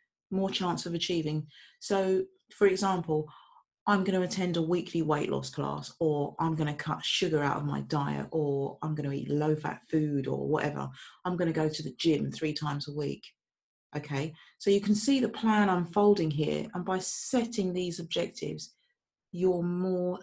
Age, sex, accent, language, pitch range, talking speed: 40-59, female, British, English, 150-190 Hz, 185 wpm